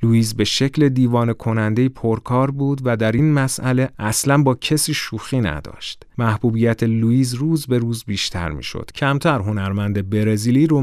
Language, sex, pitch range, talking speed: Persian, male, 105-125 Hz, 150 wpm